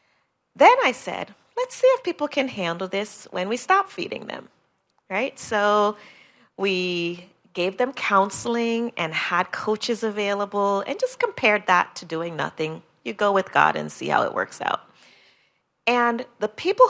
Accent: American